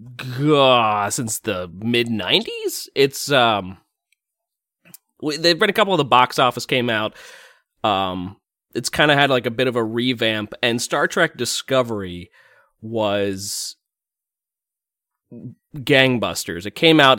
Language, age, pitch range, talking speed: English, 30-49, 105-145 Hz, 135 wpm